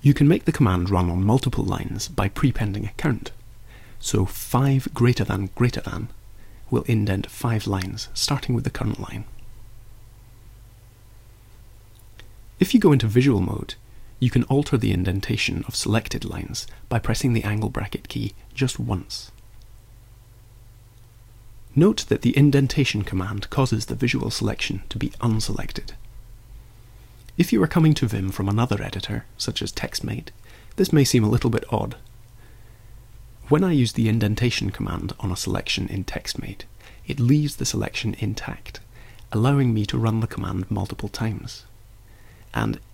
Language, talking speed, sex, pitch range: English, 150 wpm, male, 105-120 Hz